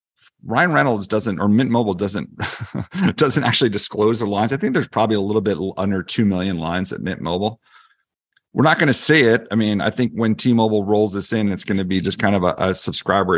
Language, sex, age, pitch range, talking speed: English, male, 40-59, 90-110 Hz, 230 wpm